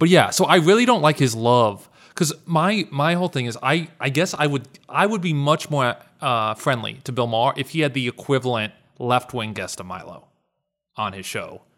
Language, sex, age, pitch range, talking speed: English, male, 20-39, 110-150 Hz, 220 wpm